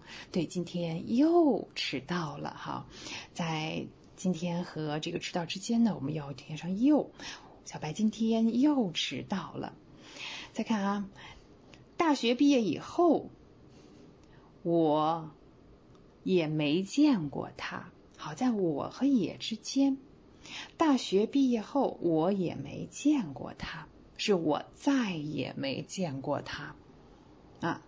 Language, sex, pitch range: English, female, 155-240 Hz